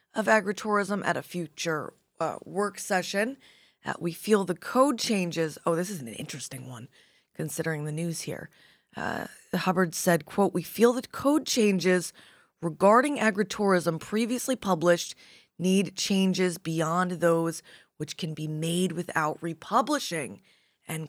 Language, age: English, 20-39